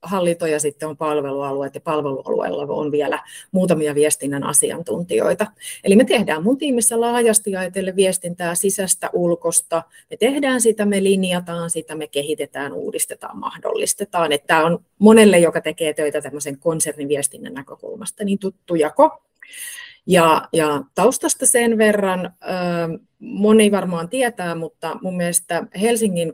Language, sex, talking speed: Finnish, female, 130 wpm